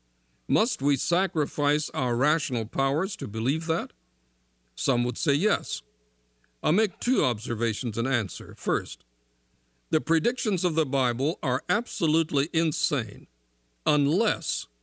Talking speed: 115 wpm